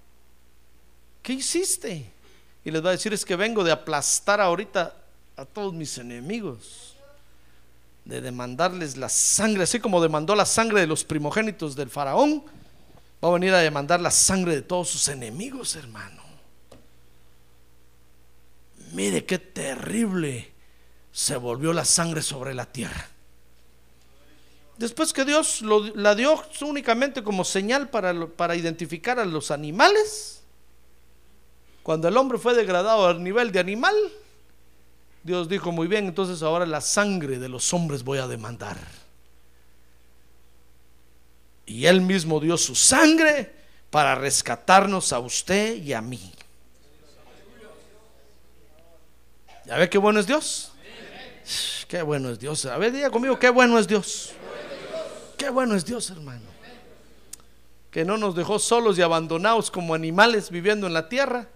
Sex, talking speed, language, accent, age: male, 135 wpm, Spanish, Mexican, 50-69